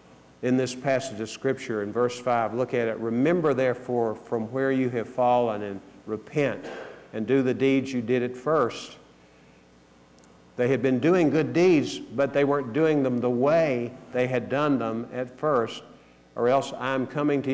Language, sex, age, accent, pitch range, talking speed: English, male, 50-69, American, 110-135 Hz, 180 wpm